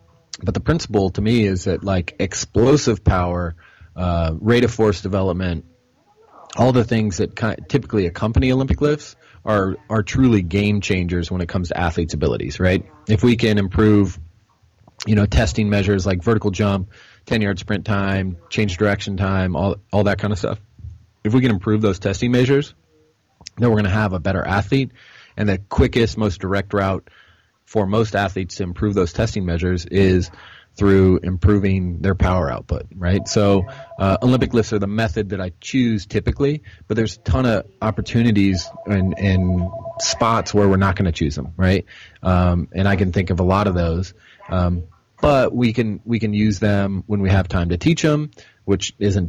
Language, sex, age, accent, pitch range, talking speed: English, male, 30-49, American, 90-110 Hz, 185 wpm